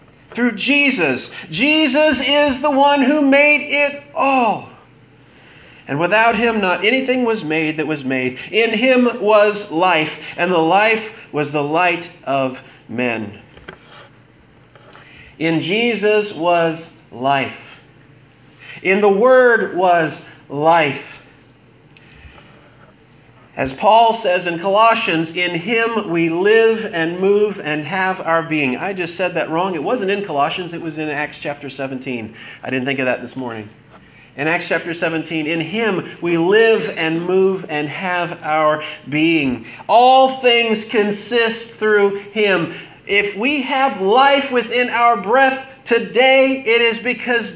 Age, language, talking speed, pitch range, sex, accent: 40-59, English, 135 wpm, 155-230 Hz, male, American